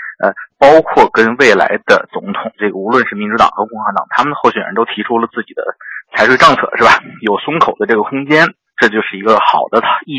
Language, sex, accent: Chinese, male, native